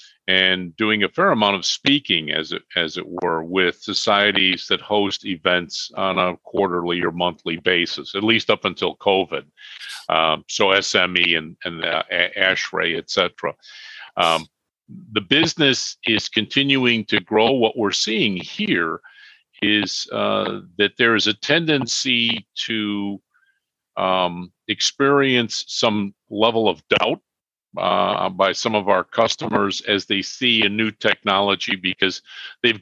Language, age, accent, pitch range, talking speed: English, 50-69, American, 90-120 Hz, 135 wpm